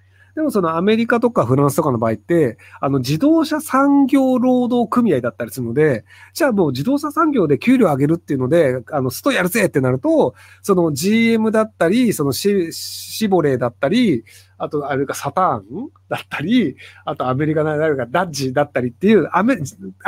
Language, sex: Japanese, male